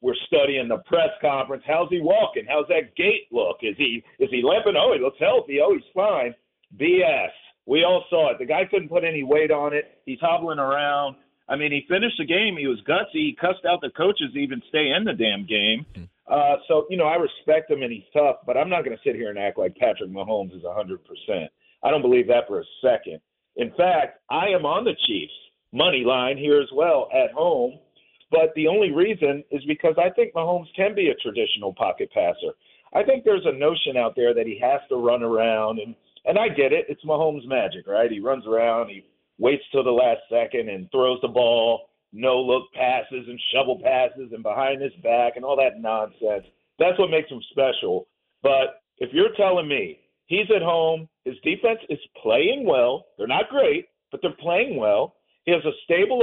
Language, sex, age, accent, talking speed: English, male, 50-69, American, 210 wpm